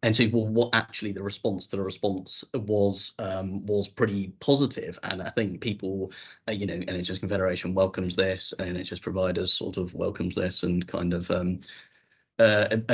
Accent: British